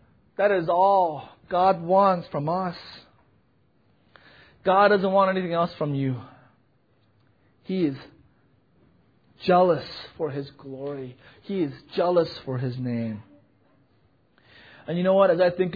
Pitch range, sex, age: 130-190 Hz, male, 30-49